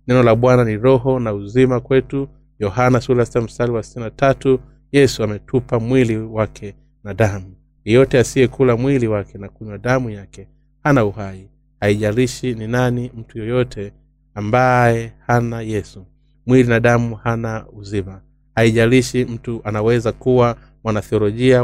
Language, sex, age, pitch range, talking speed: Swahili, male, 30-49, 105-125 Hz, 135 wpm